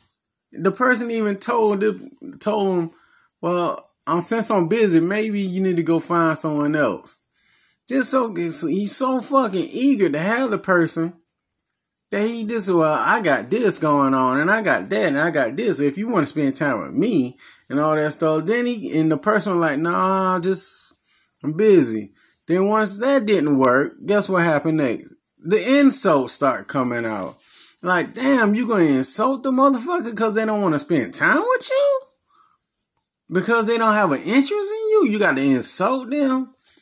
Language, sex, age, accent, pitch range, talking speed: English, male, 20-39, American, 155-245 Hz, 185 wpm